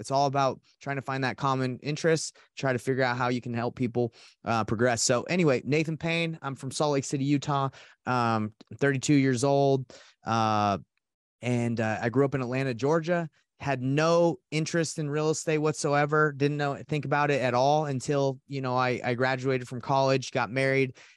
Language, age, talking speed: English, 30-49, 190 wpm